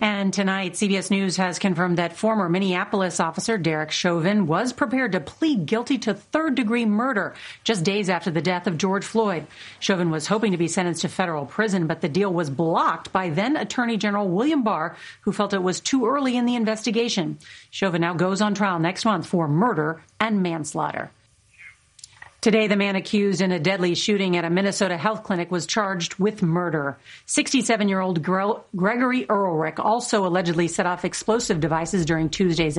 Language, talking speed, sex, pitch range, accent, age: English, 175 wpm, female, 175-220 Hz, American, 40-59